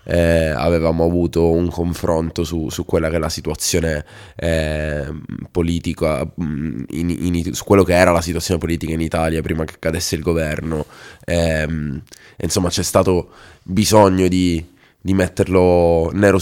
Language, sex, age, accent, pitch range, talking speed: Italian, male, 20-39, native, 85-95 Hz, 100 wpm